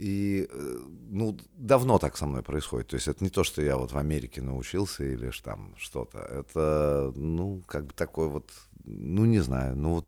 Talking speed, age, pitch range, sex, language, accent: 195 wpm, 30-49, 75-115 Hz, male, Russian, native